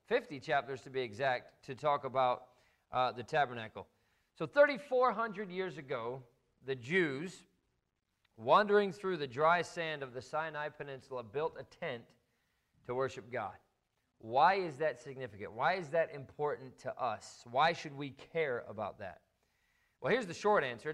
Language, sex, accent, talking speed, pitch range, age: English, male, American, 150 wpm, 125-160 Hz, 40-59